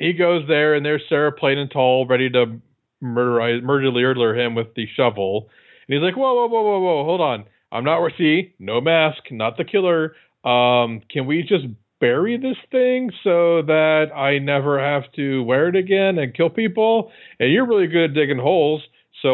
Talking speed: 190 wpm